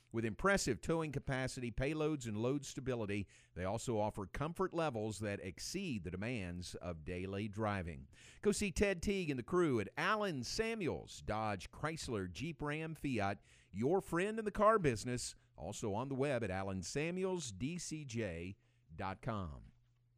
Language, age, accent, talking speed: English, 50-69, American, 140 wpm